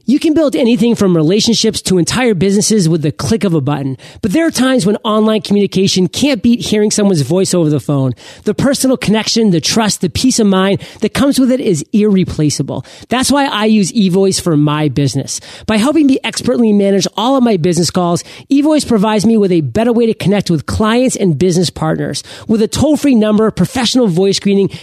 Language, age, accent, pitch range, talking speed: English, 40-59, American, 180-235 Hz, 205 wpm